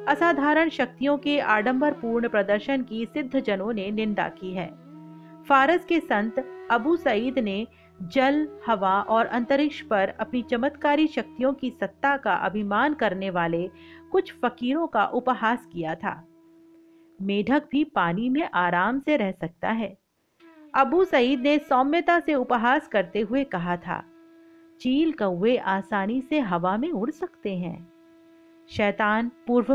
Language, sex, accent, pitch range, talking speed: Hindi, female, native, 200-295 Hz, 135 wpm